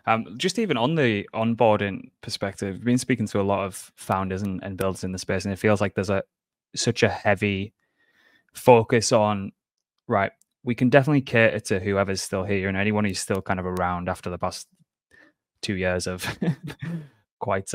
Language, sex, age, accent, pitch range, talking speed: English, male, 10-29, British, 95-110 Hz, 185 wpm